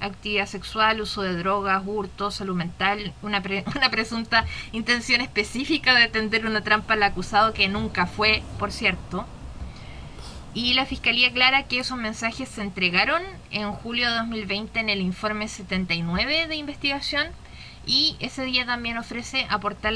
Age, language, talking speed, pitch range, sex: 20-39, Spanish, 150 wpm, 195-235 Hz, female